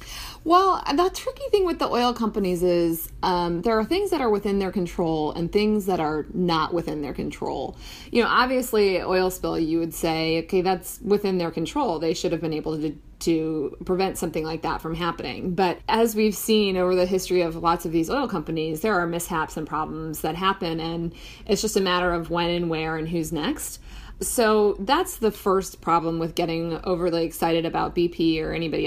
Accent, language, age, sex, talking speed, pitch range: American, English, 30-49, female, 200 wpm, 165-205 Hz